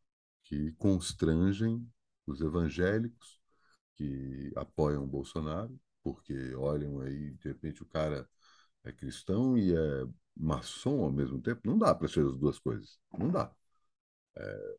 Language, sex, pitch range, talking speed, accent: Portuguese, male, 75-115 Hz, 130 wpm, Brazilian